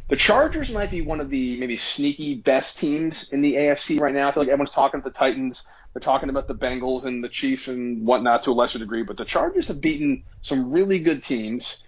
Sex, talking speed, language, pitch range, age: male, 240 wpm, English, 120-150 Hz, 30-49